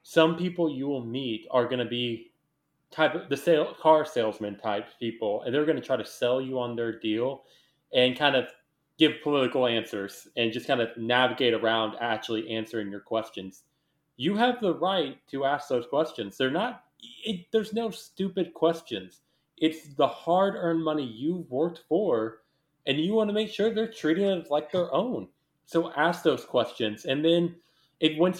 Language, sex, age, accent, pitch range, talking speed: English, male, 20-39, American, 120-160 Hz, 185 wpm